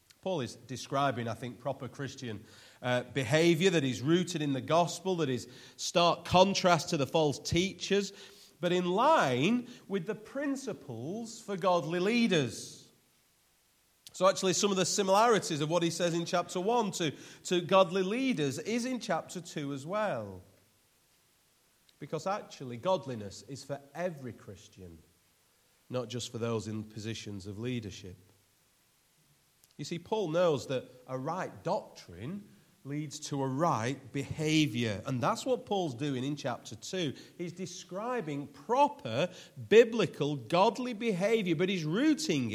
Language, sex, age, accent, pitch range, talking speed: English, male, 40-59, British, 125-185 Hz, 140 wpm